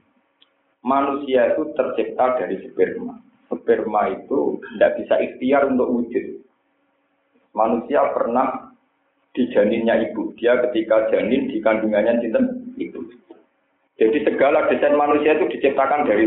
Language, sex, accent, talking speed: Indonesian, male, native, 110 wpm